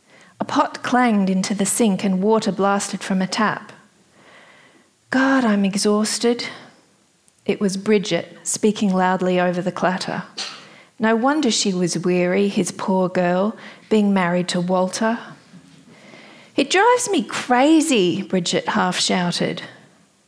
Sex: female